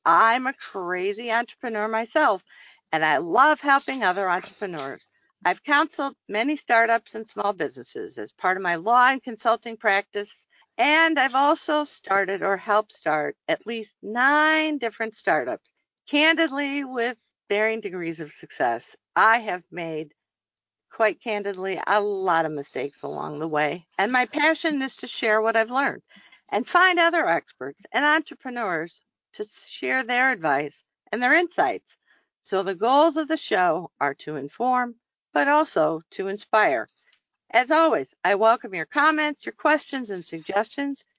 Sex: female